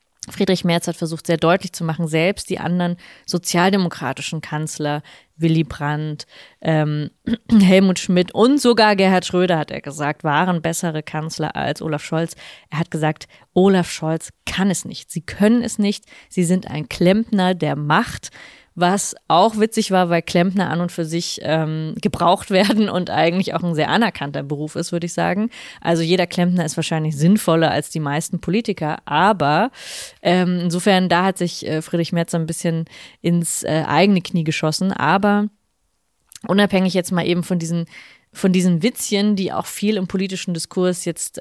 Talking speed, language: 165 wpm, German